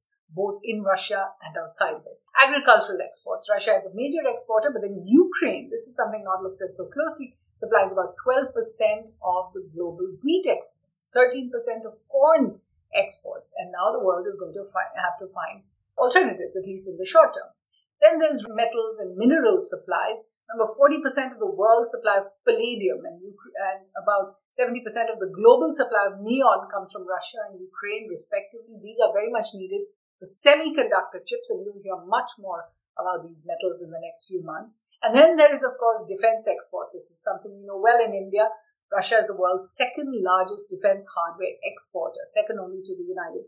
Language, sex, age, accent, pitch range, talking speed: English, female, 50-69, Indian, 195-290 Hz, 185 wpm